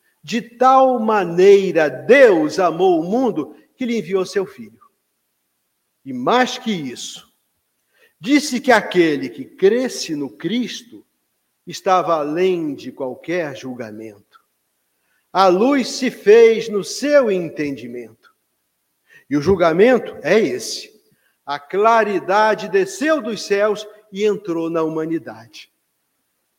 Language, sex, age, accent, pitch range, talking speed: Portuguese, male, 50-69, Brazilian, 145-220 Hz, 110 wpm